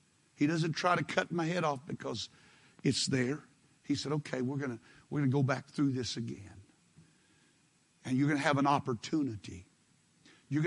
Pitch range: 125-155 Hz